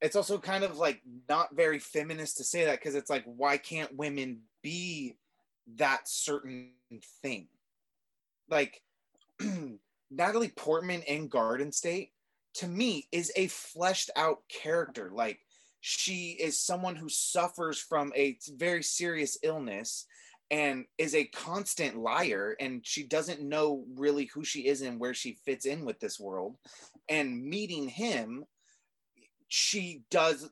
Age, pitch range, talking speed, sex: 20-39, 135-180 Hz, 140 wpm, male